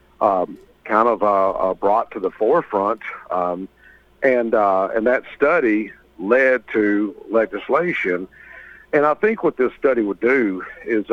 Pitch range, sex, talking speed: 100-120 Hz, male, 145 wpm